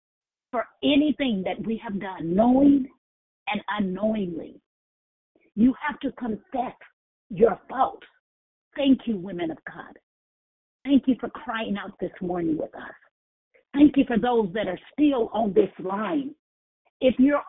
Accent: American